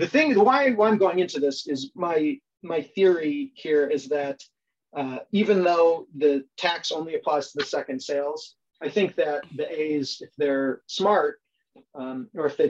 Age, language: 30-49, English